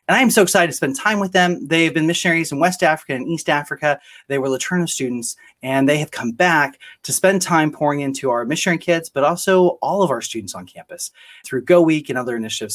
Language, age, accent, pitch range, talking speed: English, 30-49, American, 130-175 Hz, 240 wpm